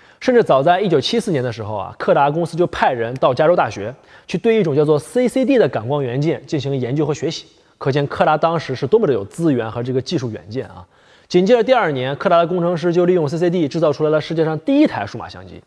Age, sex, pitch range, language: 20-39, male, 135-185 Hz, Chinese